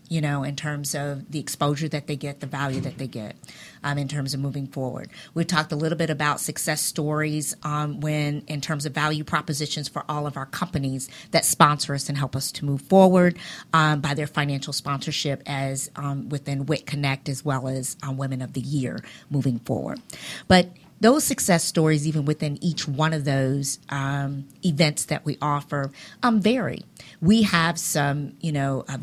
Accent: American